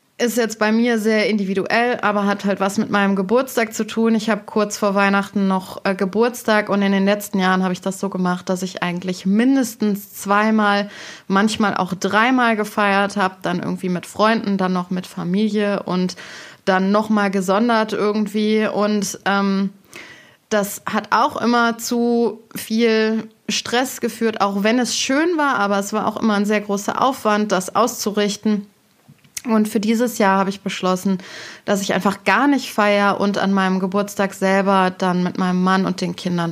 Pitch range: 195-225 Hz